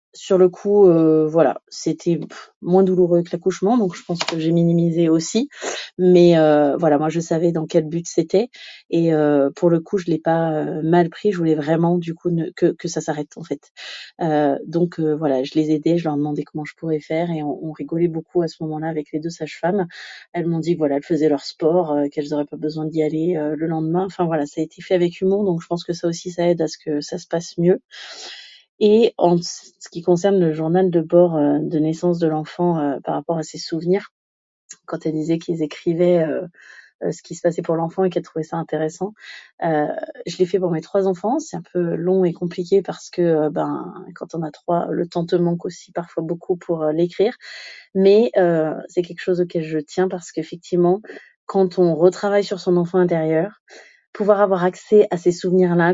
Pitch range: 160-180 Hz